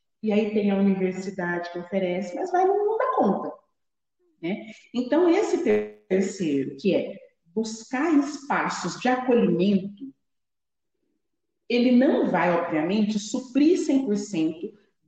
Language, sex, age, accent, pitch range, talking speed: Portuguese, female, 40-59, Brazilian, 185-265 Hz, 115 wpm